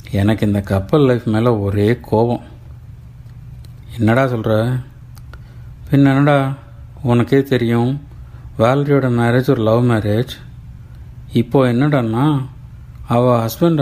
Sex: male